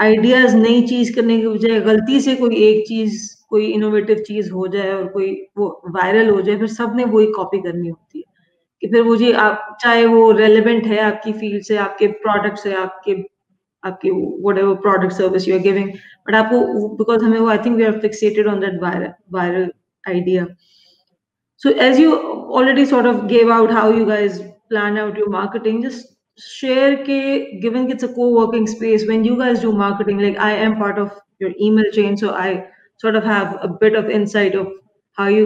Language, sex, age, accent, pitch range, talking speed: English, female, 20-39, Indian, 200-230 Hz, 165 wpm